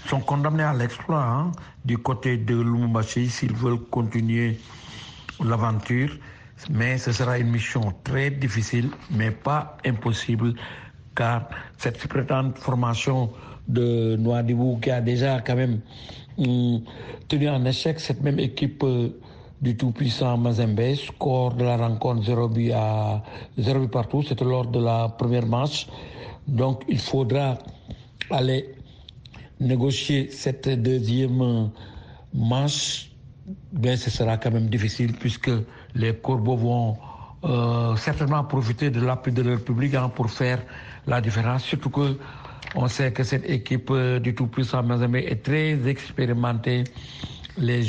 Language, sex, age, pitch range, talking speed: French, male, 60-79, 120-135 Hz, 130 wpm